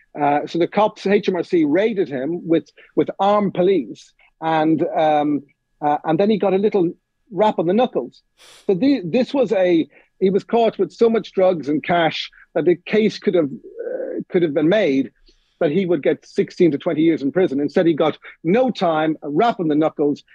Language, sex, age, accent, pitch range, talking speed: English, male, 50-69, British, 150-200 Hz, 200 wpm